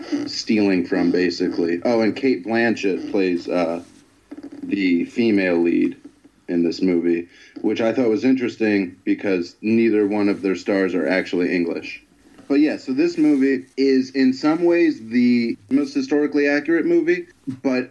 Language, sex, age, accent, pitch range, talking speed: English, male, 30-49, American, 100-135 Hz, 145 wpm